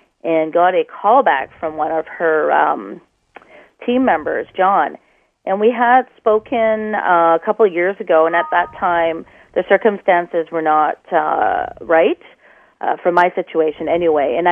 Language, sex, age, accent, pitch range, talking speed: English, female, 40-59, American, 155-185 Hz, 160 wpm